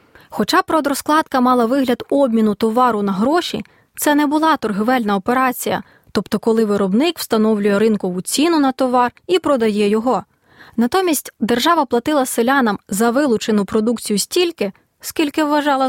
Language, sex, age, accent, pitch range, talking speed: Ukrainian, female, 20-39, native, 210-265 Hz, 130 wpm